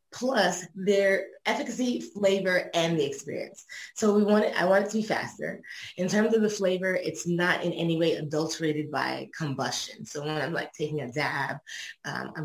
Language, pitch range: English, 150-180 Hz